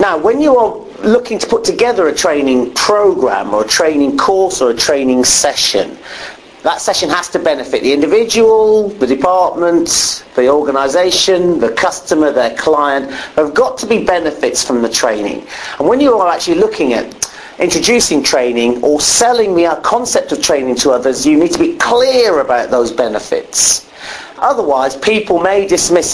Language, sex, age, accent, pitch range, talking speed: English, male, 40-59, British, 150-235 Hz, 165 wpm